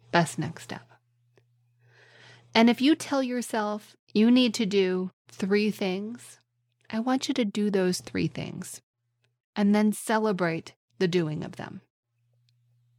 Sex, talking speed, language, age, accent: female, 135 wpm, English, 30-49, American